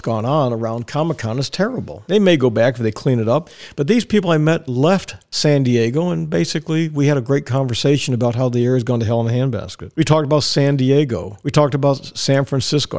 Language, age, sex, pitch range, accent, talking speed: English, 50-69, male, 115-150 Hz, American, 240 wpm